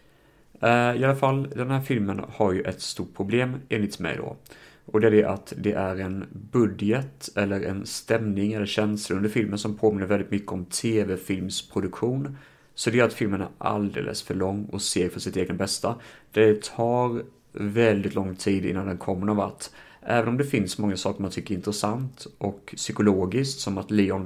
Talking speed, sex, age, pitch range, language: 190 wpm, male, 30-49, 95-115 Hz, Swedish